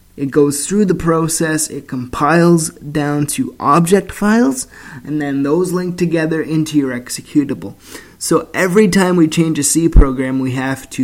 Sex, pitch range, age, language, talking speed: male, 125-160 Hz, 20-39, English, 165 wpm